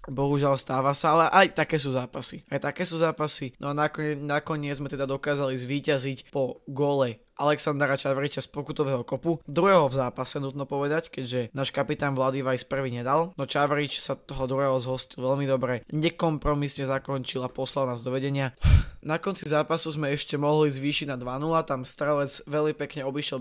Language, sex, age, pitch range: Slovak, male, 20-39, 130-150 Hz